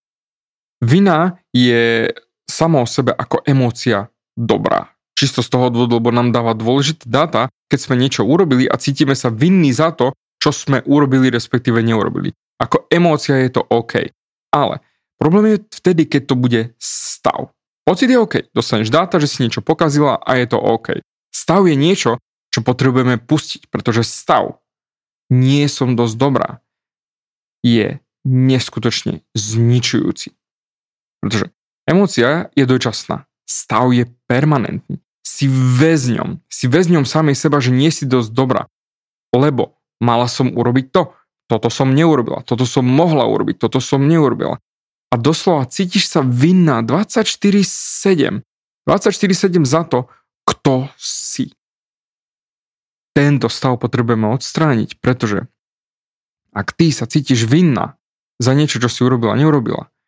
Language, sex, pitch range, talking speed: Slovak, male, 120-155 Hz, 130 wpm